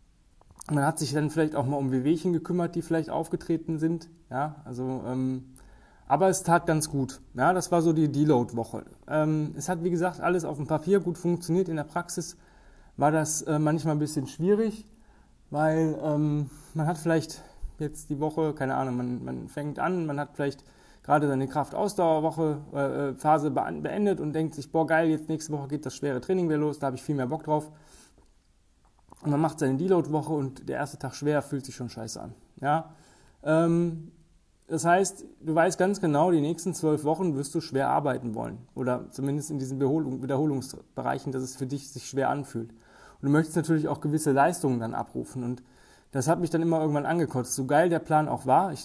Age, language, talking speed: 20-39, German, 200 wpm